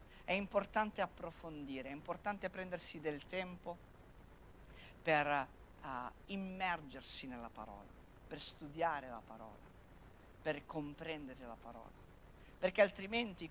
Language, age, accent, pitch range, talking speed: Italian, 50-69, native, 140-200 Hz, 100 wpm